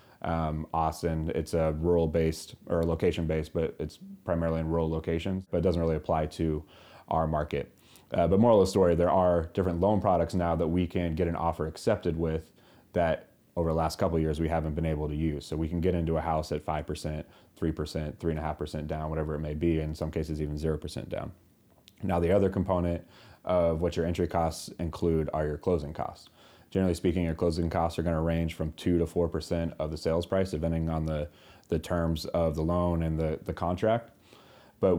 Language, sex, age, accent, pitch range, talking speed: English, male, 30-49, American, 80-85 Hz, 205 wpm